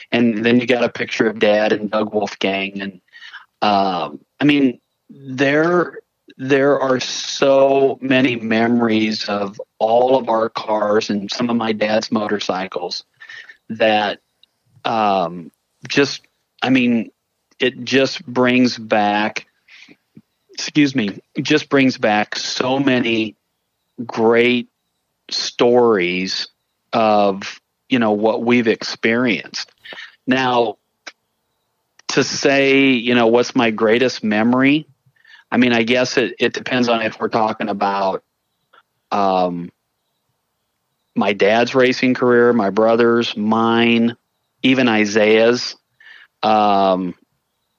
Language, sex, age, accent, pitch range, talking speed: English, male, 40-59, American, 110-130 Hz, 110 wpm